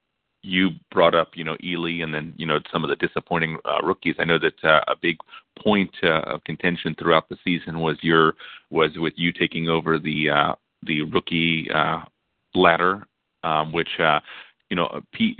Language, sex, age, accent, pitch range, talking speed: English, male, 30-49, American, 80-85 Hz, 185 wpm